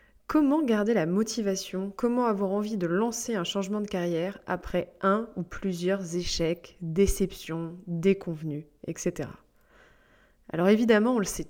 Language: French